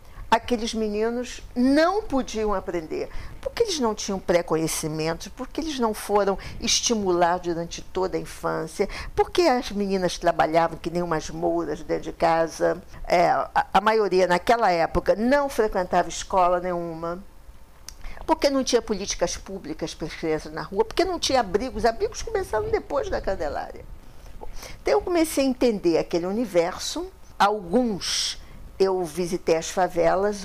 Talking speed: 140 wpm